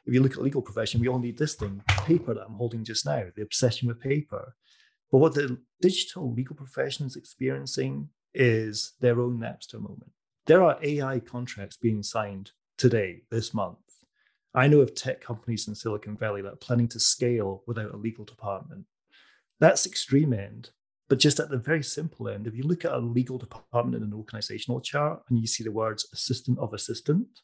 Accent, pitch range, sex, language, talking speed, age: British, 110-130 Hz, male, English, 195 wpm, 30-49